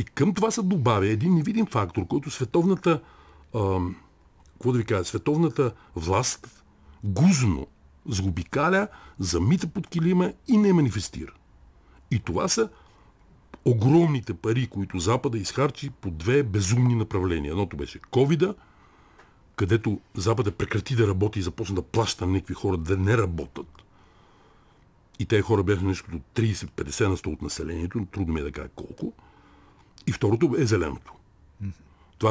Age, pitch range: 60-79, 95-140 Hz